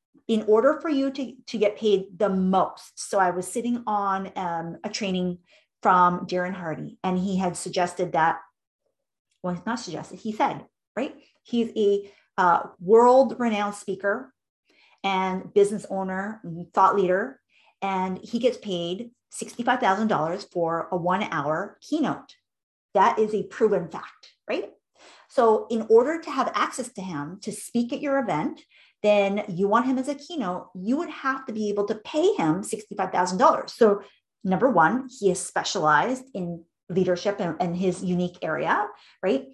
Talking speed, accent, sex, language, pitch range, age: 155 wpm, American, female, English, 180-245 Hz, 40-59